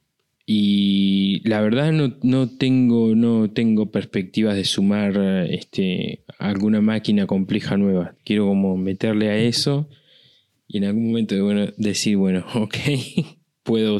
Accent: Argentinian